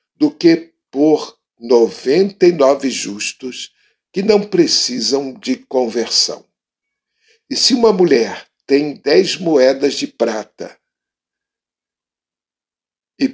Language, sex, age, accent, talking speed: Portuguese, male, 60-79, Brazilian, 100 wpm